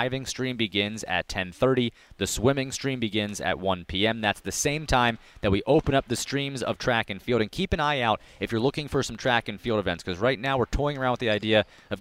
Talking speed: 255 wpm